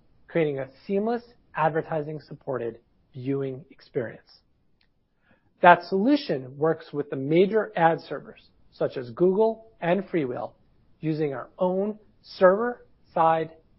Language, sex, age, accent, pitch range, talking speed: English, male, 40-59, American, 145-190 Hz, 105 wpm